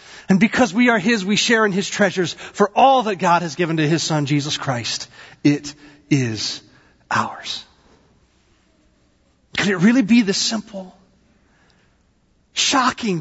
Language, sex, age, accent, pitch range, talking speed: English, male, 40-59, American, 155-225 Hz, 140 wpm